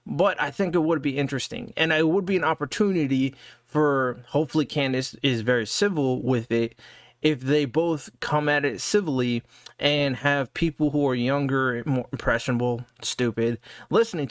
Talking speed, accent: 160 wpm, American